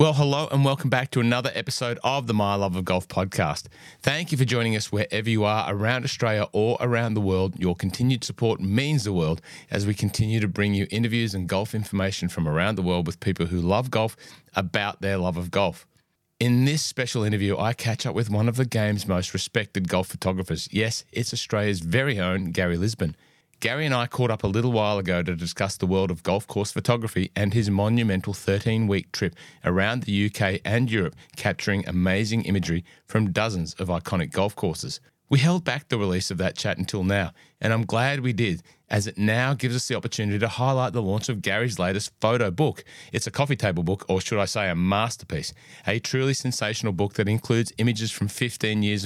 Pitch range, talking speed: 95-120 Hz, 210 wpm